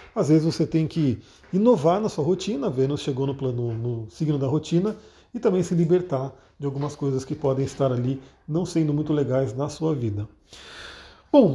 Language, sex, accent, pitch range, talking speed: Portuguese, male, Brazilian, 145-190 Hz, 190 wpm